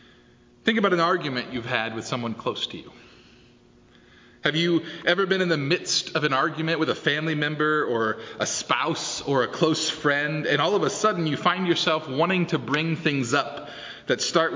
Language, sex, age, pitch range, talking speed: English, male, 30-49, 135-185 Hz, 195 wpm